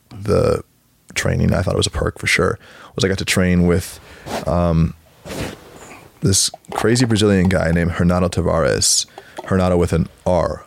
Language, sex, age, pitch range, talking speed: English, male, 20-39, 85-100 Hz, 155 wpm